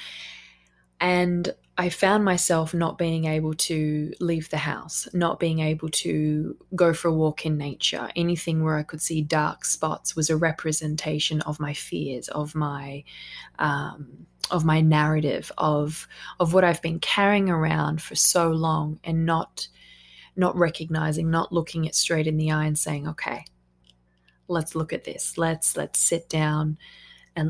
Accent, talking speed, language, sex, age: Australian, 160 wpm, English, female, 20-39